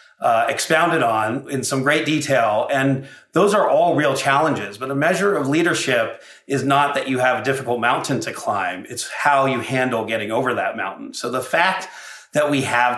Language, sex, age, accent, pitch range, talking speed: English, male, 40-59, American, 120-145 Hz, 195 wpm